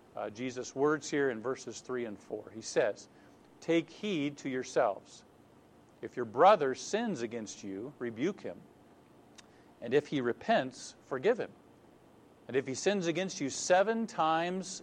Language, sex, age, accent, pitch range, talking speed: English, male, 50-69, American, 115-155 Hz, 150 wpm